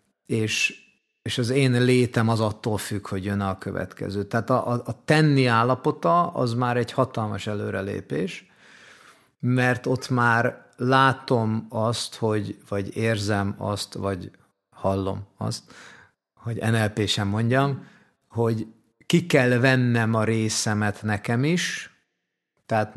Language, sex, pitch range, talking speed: Hungarian, male, 105-130 Hz, 125 wpm